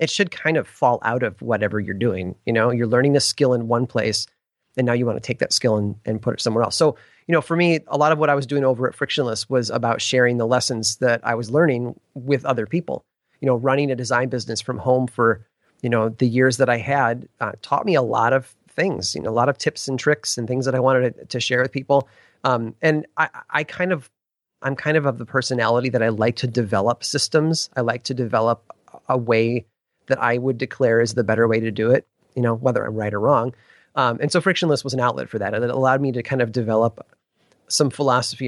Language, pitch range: English, 115-135 Hz